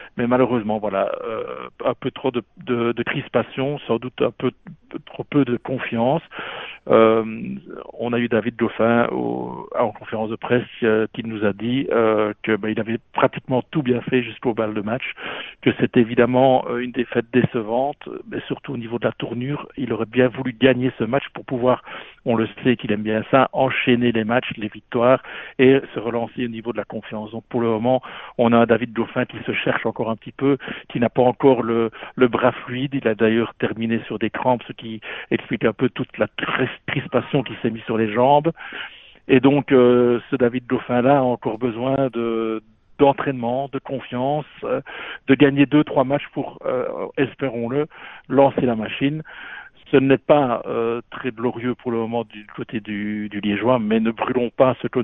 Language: French